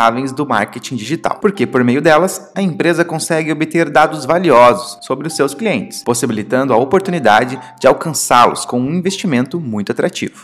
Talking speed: 155 wpm